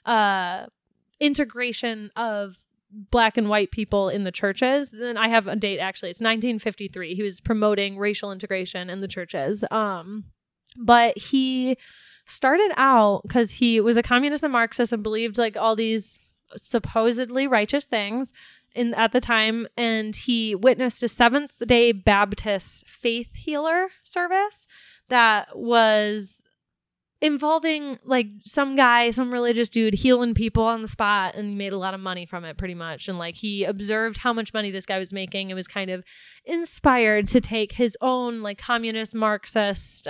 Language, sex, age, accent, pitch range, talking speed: English, female, 20-39, American, 205-245 Hz, 160 wpm